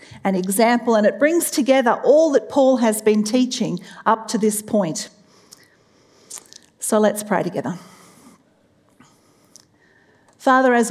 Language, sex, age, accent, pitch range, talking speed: English, female, 40-59, Australian, 185-235 Hz, 120 wpm